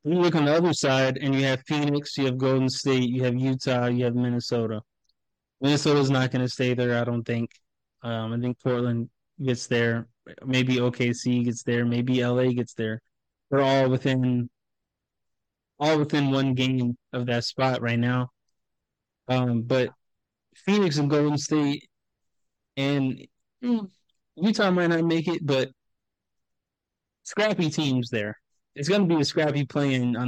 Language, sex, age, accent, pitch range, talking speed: English, male, 20-39, American, 120-140 Hz, 160 wpm